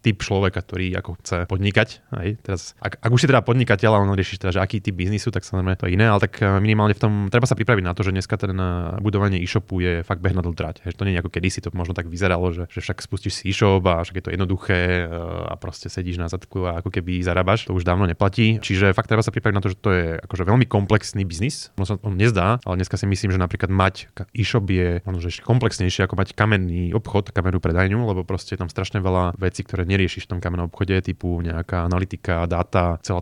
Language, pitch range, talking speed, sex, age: Slovak, 90-105 Hz, 235 wpm, male, 20-39